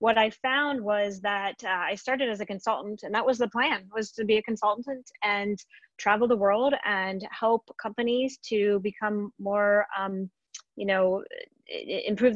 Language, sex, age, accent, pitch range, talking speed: English, female, 30-49, American, 195-225 Hz, 170 wpm